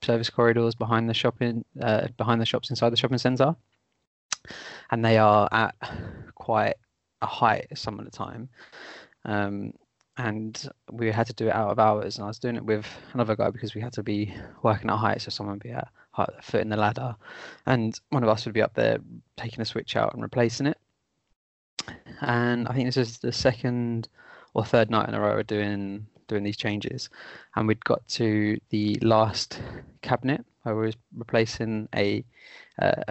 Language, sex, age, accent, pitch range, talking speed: English, male, 20-39, British, 105-120 Hz, 185 wpm